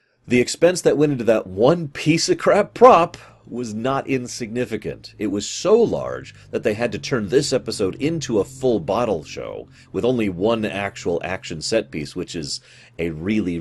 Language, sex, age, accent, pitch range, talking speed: English, male, 30-49, American, 80-125 Hz, 170 wpm